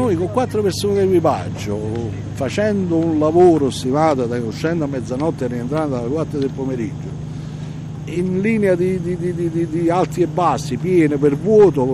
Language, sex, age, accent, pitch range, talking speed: Italian, male, 60-79, native, 115-155 Hz, 175 wpm